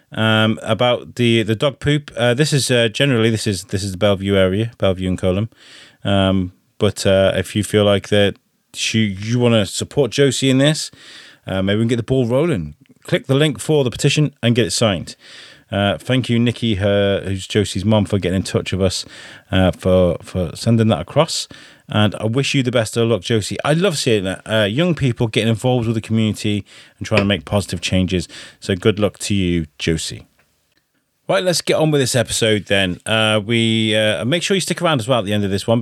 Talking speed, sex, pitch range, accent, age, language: 220 wpm, male, 100-120 Hz, British, 30-49, English